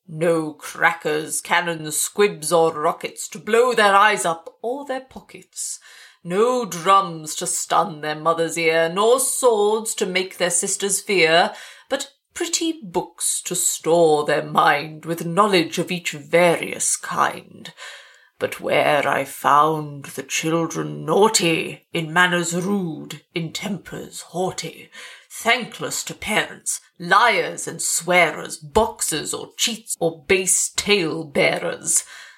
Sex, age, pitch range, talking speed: female, 30-49, 165-205 Hz, 120 wpm